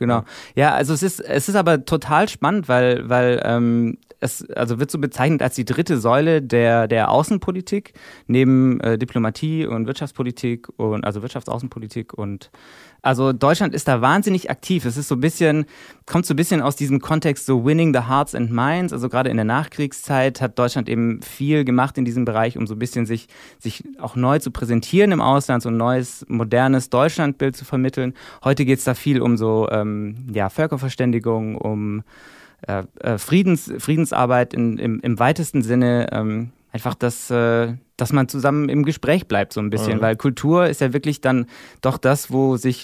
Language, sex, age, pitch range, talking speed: German, male, 20-39, 115-145 Hz, 180 wpm